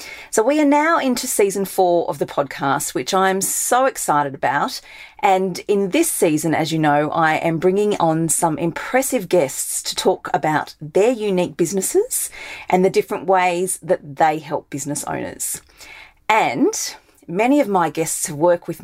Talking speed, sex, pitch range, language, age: 160 wpm, female, 150-195 Hz, English, 40-59